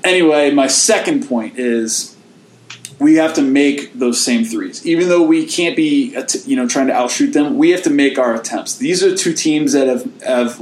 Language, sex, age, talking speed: English, male, 20-39, 205 wpm